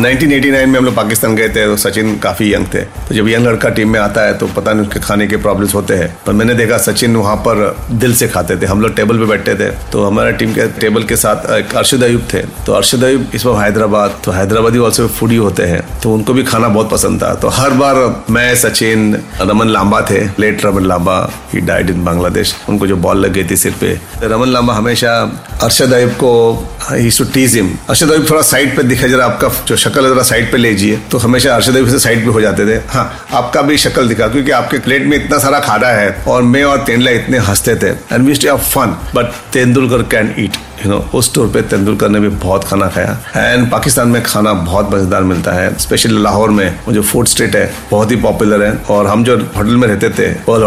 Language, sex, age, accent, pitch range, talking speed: Hindi, male, 40-59, native, 105-125 Hz, 215 wpm